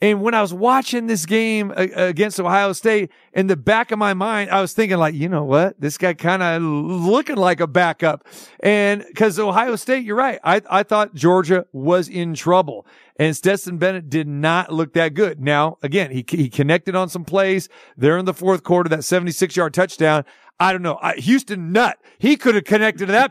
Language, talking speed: English, 205 wpm